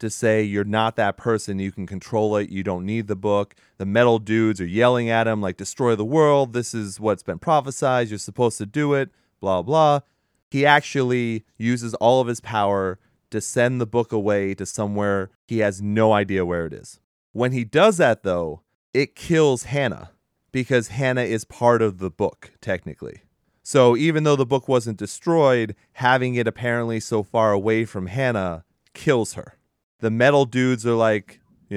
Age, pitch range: 30-49, 100-125 Hz